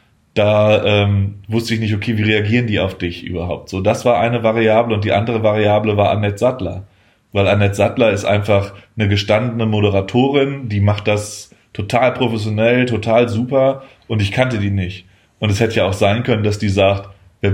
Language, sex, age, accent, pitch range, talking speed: German, male, 20-39, German, 100-120 Hz, 190 wpm